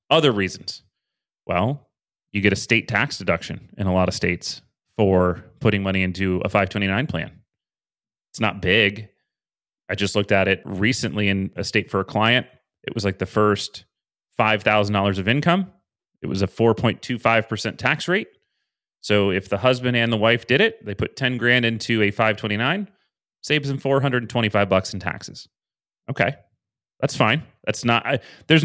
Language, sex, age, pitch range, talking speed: English, male, 30-49, 100-130 Hz, 165 wpm